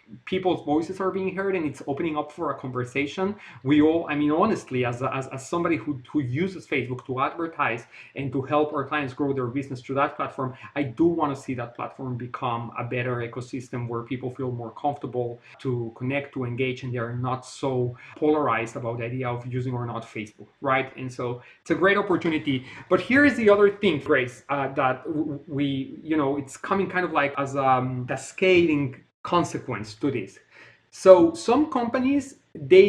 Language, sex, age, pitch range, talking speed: English, male, 30-49, 130-170 Hz, 195 wpm